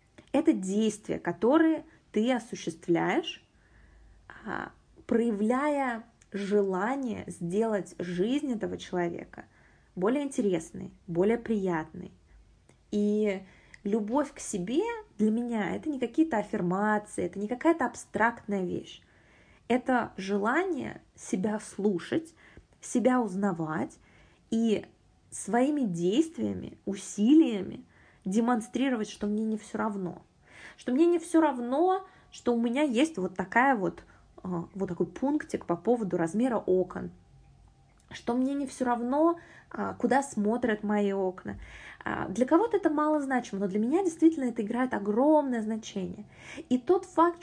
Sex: female